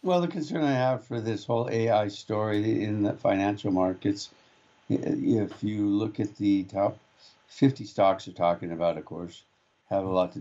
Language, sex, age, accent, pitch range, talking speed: English, male, 60-79, American, 100-135 Hz, 180 wpm